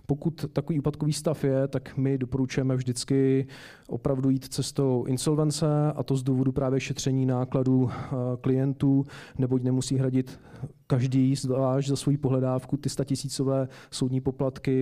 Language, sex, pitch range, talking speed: Czech, male, 125-140 Hz, 140 wpm